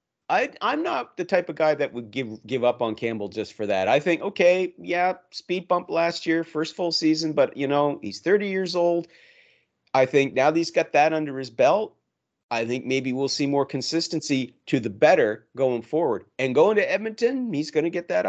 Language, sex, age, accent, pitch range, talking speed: English, male, 40-59, American, 120-165 Hz, 215 wpm